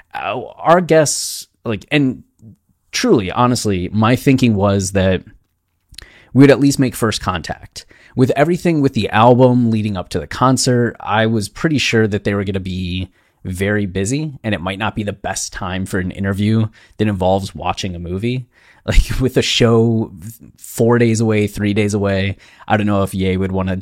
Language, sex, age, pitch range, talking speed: English, male, 20-39, 95-125 Hz, 185 wpm